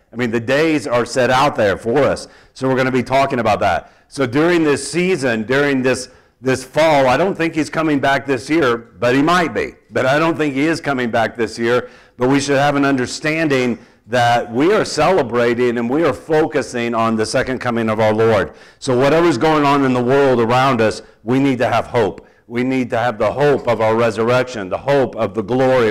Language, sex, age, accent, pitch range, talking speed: English, male, 50-69, American, 115-140 Hz, 225 wpm